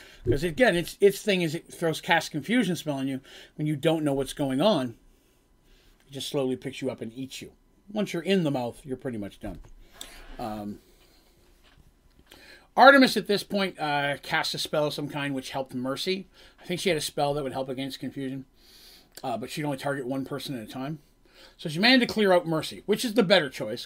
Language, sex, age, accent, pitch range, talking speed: English, male, 40-59, American, 130-185 Hz, 215 wpm